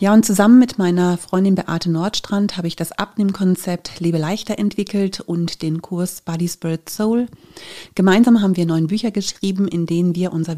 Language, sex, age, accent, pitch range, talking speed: German, female, 30-49, German, 170-205 Hz, 175 wpm